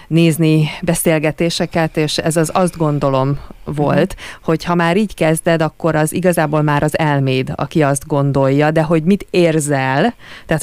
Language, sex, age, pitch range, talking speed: Hungarian, female, 30-49, 150-175 Hz, 150 wpm